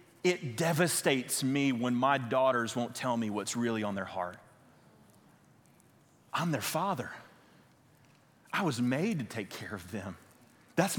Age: 30-49